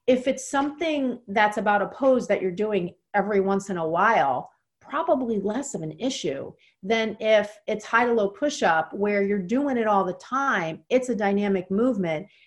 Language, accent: English, American